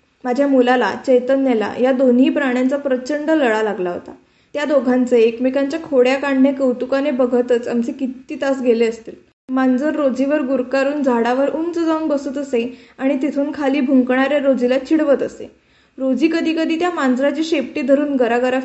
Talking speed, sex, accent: 135 wpm, female, native